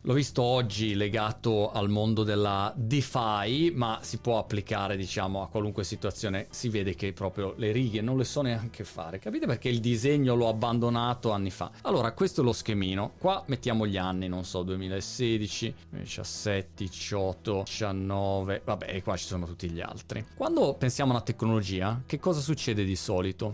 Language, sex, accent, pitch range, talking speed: Italian, male, native, 100-130 Hz, 170 wpm